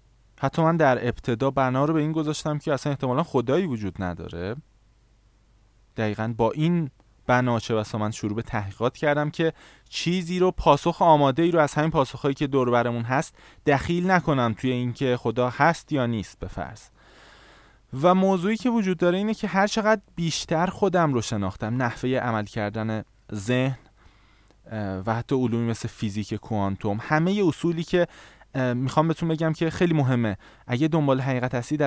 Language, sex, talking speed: Persian, male, 160 wpm